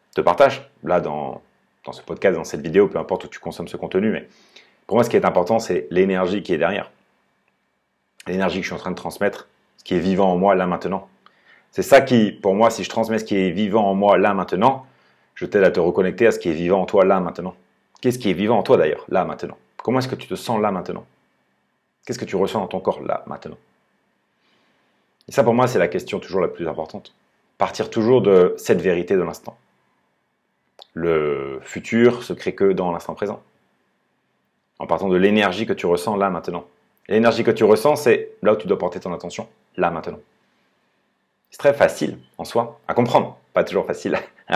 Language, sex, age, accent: French, male, 30-49, French